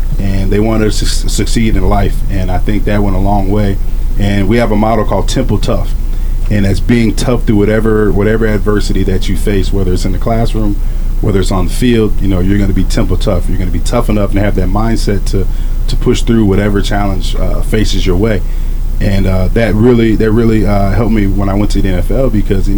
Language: English